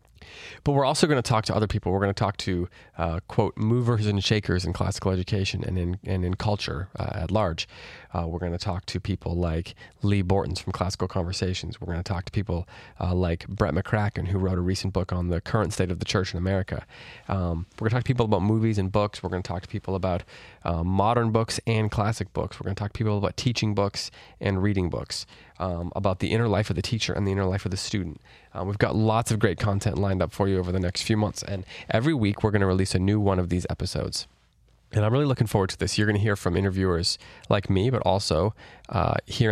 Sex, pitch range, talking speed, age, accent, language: male, 90-105 Hz, 250 wpm, 30-49, American, English